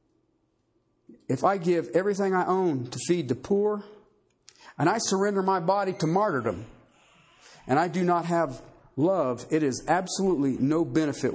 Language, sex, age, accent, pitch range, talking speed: English, male, 50-69, American, 140-210 Hz, 150 wpm